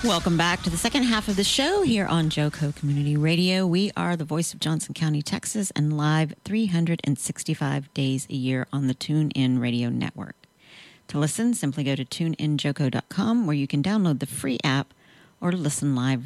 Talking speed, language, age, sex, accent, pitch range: 180 wpm, English, 40-59, female, American, 140-175 Hz